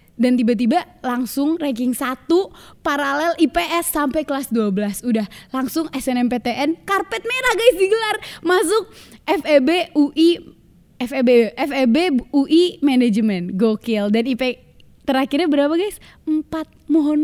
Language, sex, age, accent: Indonesian, female, 20-39, native